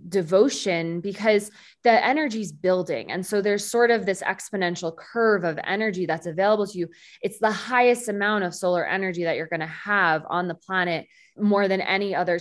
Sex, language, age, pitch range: female, English, 20-39, 170-210 Hz